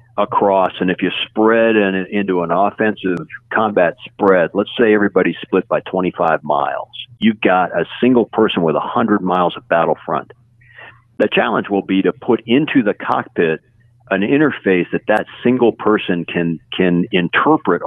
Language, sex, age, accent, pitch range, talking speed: English, male, 50-69, American, 90-115 Hz, 155 wpm